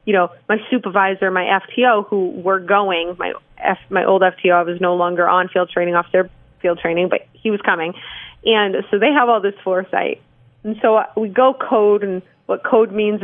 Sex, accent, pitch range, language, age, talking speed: female, American, 185-225 Hz, English, 30-49, 205 wpm